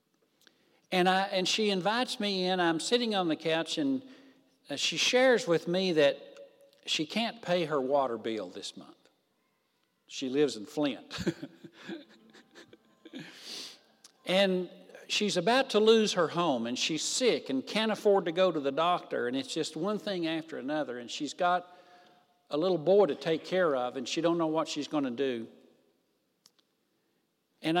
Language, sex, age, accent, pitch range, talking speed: English, male, 60-79, American, 140-200 Hz, 160 wpm